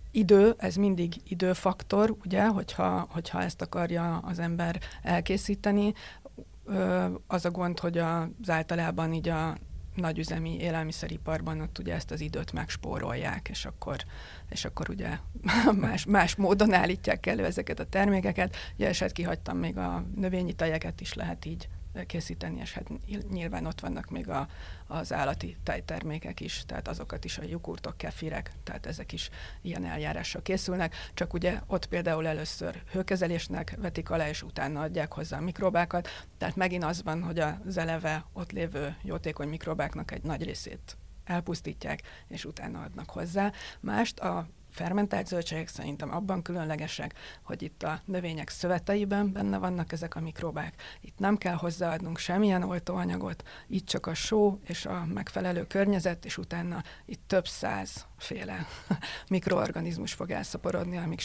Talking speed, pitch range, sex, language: 145 wpm, 150-185 Hz, female, Hungarian